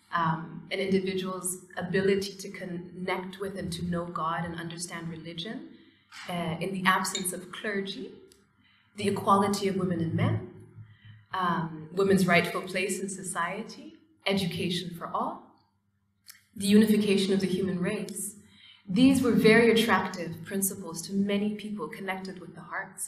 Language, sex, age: English, female, 30-49